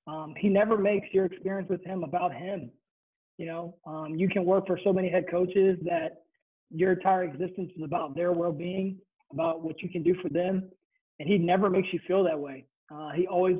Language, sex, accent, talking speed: English, male, American, 210 wpm